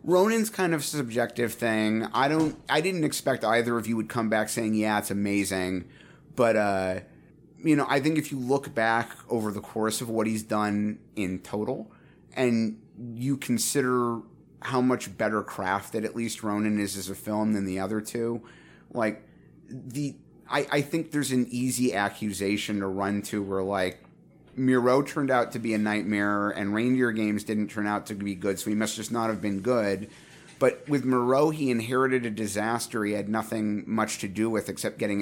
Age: 30-49